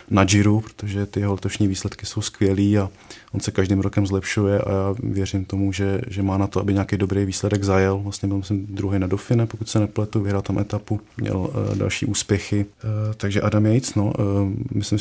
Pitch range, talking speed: 100-105 Hz, 210 wpm